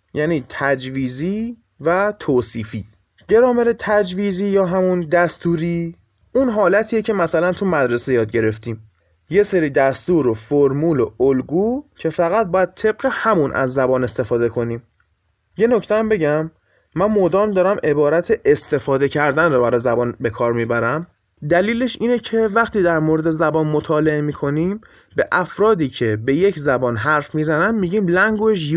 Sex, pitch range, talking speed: male, 140-210 Hz, 140 wpm